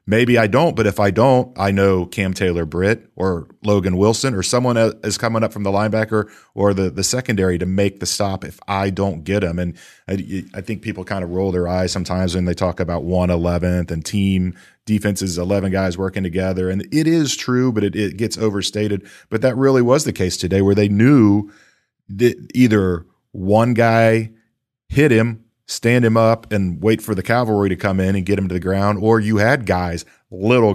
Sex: male